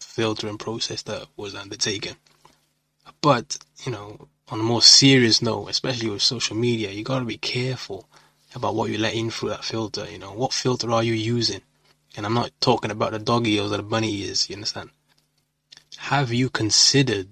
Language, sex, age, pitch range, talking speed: English, male, 20-39, 105-120 Hz, 185 wpm